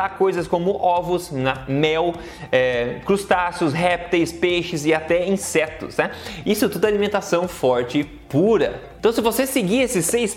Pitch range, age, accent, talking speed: 140-185 Hz, 20-39, Brazilian, 140 wpm